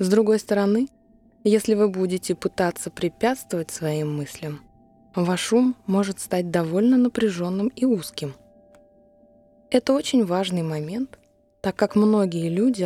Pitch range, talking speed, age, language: 170-225 Hz, 120 wpm, 20-39, Russian